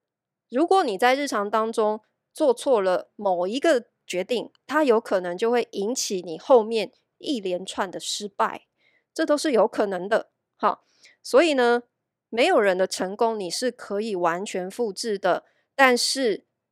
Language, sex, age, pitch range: Chinese, female, 30-49, 195-265 Hz